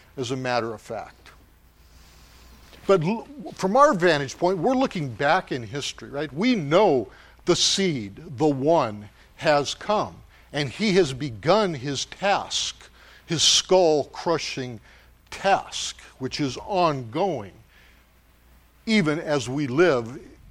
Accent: American